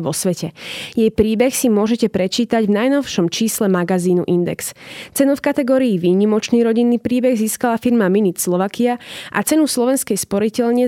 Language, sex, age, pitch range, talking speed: Slovak, female, 20-39, 190-240 Hz, 145 wpm